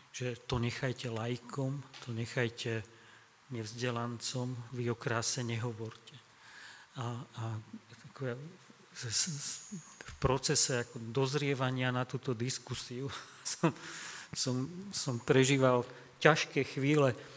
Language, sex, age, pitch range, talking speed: Slovak, male, 40-59, 120-140 Hz, 95 wpm